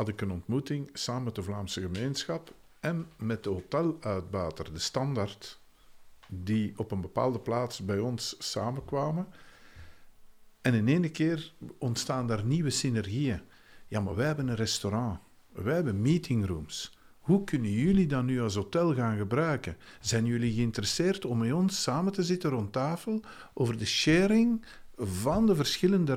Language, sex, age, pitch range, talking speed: Dutch, male, 50-69, 105-155 Hz, 150 wpm